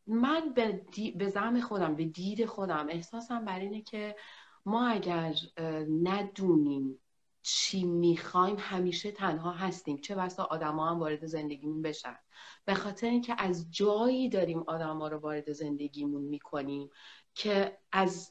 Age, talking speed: 40-59, 135 wpm